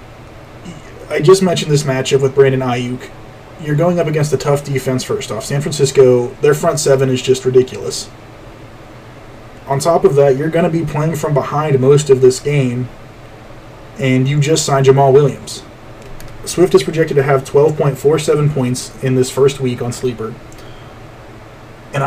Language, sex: English, male